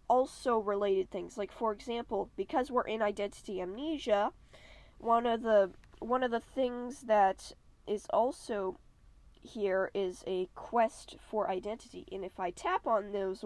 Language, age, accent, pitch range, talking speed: English, 10-29, American, 195-240 Hz, 145 wpm